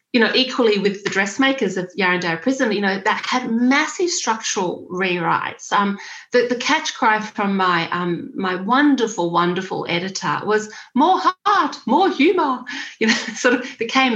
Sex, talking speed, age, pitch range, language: female, 160 wpm, 30-49, 170-230 Hz, English